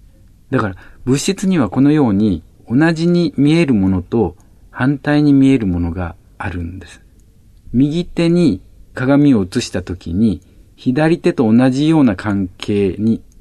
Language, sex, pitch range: Japanese, male, 90-125 Hz